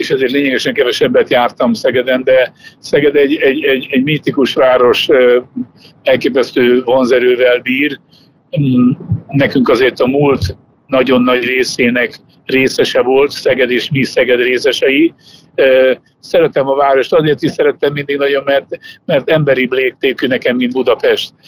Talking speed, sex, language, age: 130 wpm, male, Hungarian, 60-79